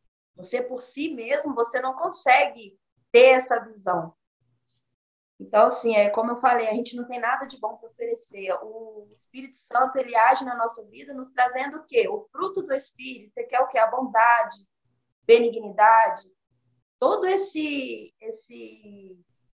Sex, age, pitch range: female, 20-39, 215-275 Hz